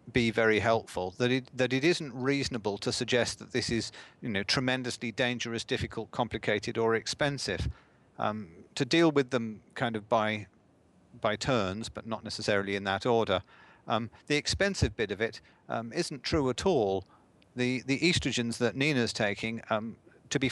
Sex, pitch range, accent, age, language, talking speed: male, 105-125 Hz, British, 40-59, English, 170 wpm